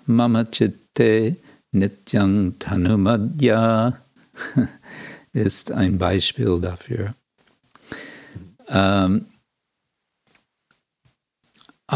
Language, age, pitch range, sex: English, 60-79, 95-115 Hz, male